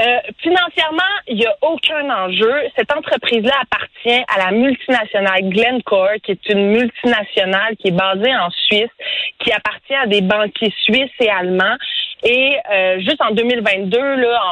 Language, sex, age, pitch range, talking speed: French, female, 30-49, 205-275 Hz, 150 wpm